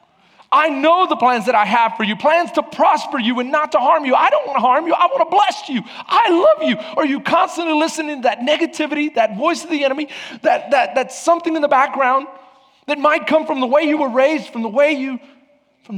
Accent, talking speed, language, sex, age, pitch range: American, 245 wpm, English, male, 40-59, 185-270 Hz